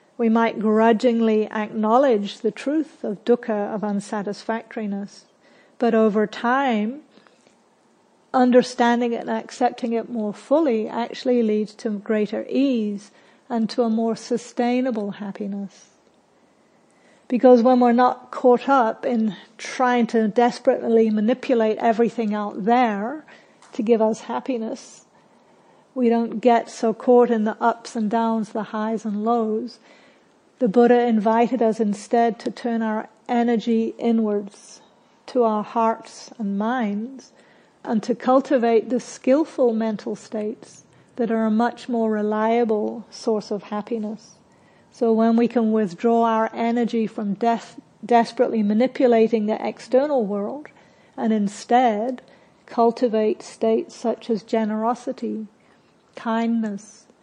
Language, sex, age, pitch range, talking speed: English, female, 50-69, 215-240 Hz, 120 wpm